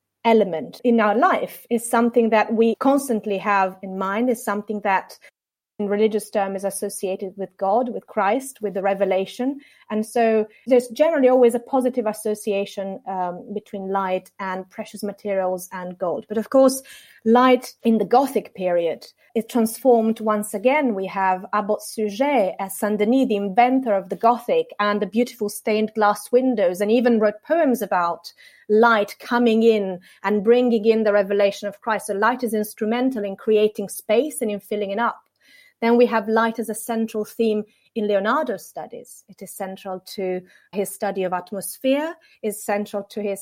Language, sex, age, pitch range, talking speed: English, female, 30-49, 195-235 Hz, 170 wpm